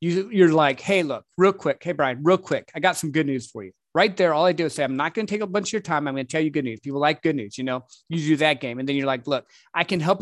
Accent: American